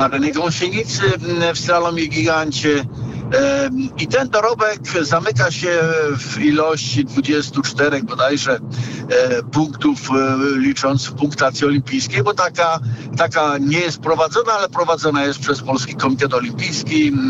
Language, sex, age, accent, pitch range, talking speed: Polish, male, 50-69, native, 130-160 Hz, 120 wpm